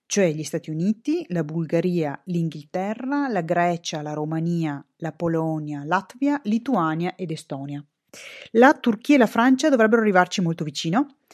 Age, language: 30-49, Italian